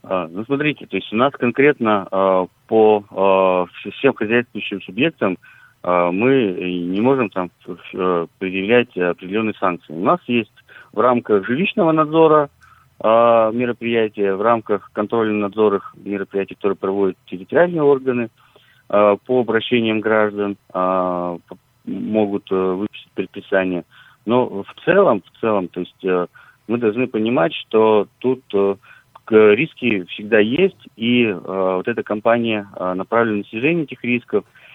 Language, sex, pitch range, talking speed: Russian, male, 95-120 Hz, 115 wpm